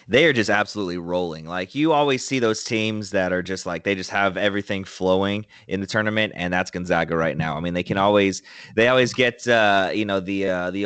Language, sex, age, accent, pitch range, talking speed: English, male, 20-39, American, 95-110 Hz, 230 wpm